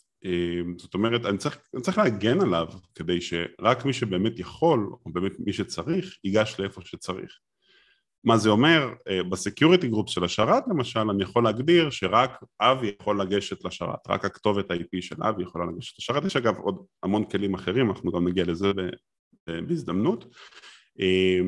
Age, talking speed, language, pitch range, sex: 30-49, 155 wpm, Hebrew, 95-140 Hz, male